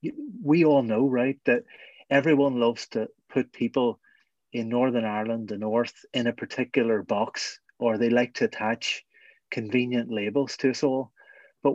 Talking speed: 155 wpm